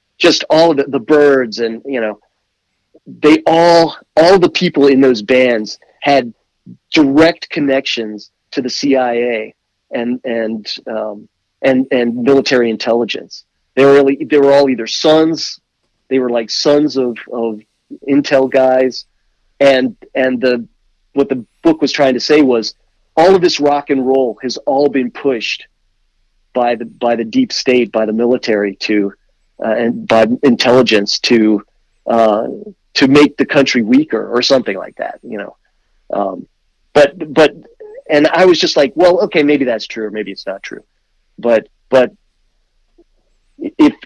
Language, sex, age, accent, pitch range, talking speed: English, male, 40-59, American, 115-155 Hz, 155 wpm